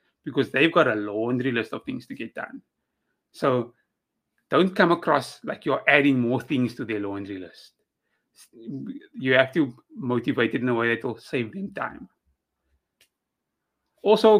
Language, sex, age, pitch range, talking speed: English, male, 30-49, 120-165 Hz, 160 wpm